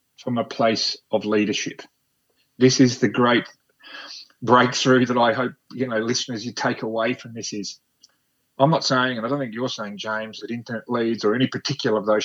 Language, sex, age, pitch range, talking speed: English, male, 30-49, 115-145 Hz, 195 wpm